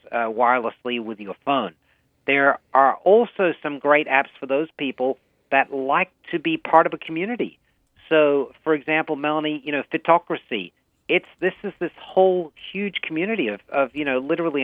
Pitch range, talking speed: 130-155 Hz, 170 wpm